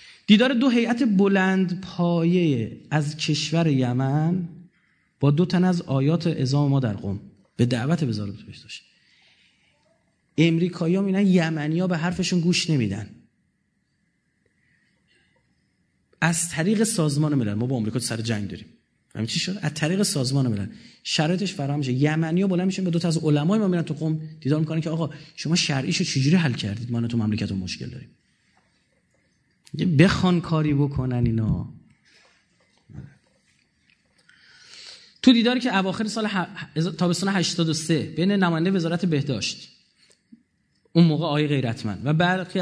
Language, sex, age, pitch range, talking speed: Persian, male, 30-49, 145-185 Hz, 135 wpm